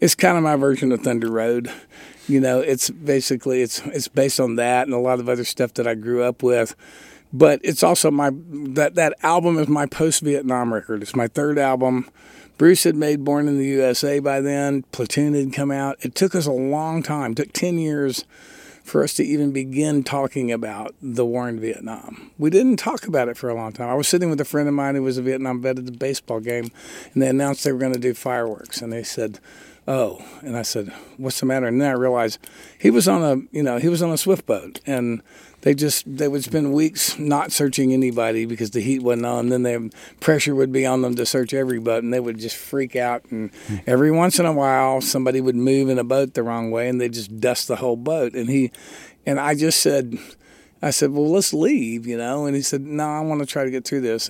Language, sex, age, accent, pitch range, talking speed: English, male, 50-69, American, 125-145 Hz, 240 wpm